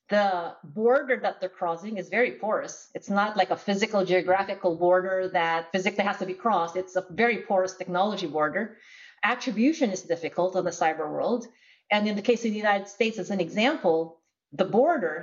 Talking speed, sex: 185 wpm, female